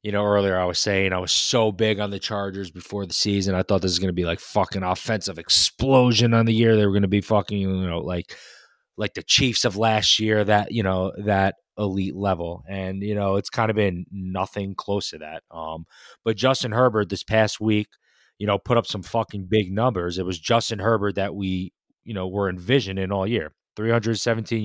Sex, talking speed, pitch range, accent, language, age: male, 220 wpm, 95-110 Hz, American, English, 20-39